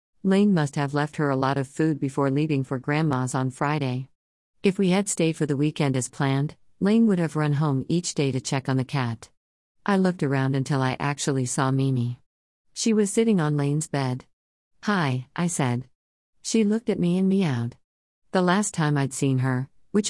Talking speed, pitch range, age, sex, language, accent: 195 wpm, 130-180 Hz, 50-69, female, English, American